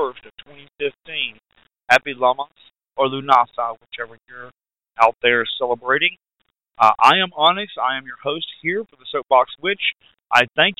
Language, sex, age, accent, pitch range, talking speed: English, male, 40-59, American, 125-165 Hz, 145 wpm